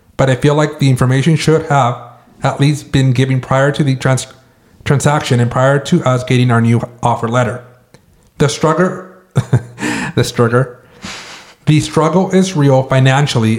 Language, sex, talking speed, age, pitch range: English, male, 155 wpm, 30-49, 120-145 Hz